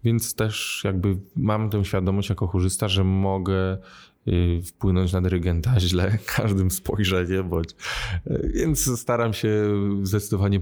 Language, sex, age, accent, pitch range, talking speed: Polish, male, 20-39, native, 95-110 Hz, 115 wpm